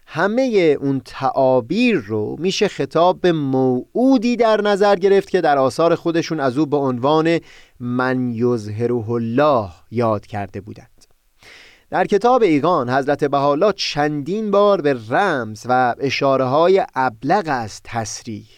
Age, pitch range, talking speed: 30-49, 125-185 Hz, 130 wpm